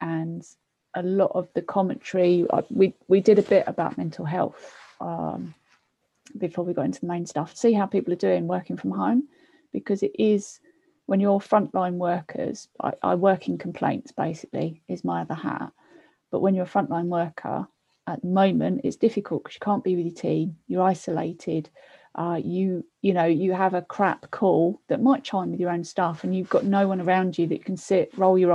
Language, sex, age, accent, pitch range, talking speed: English, female, 30-49, British, 175-205 Hz, 200 wpm